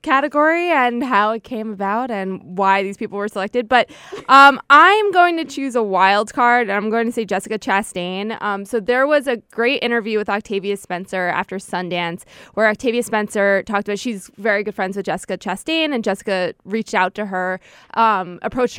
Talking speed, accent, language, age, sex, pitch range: 190 wpm, American, English, 20-39, female, 190-230 Hz